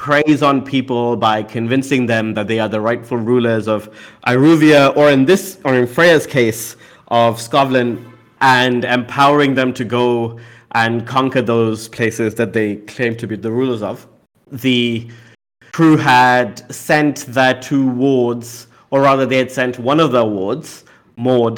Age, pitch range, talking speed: 30-49, 115-135 Hz, 160 wpm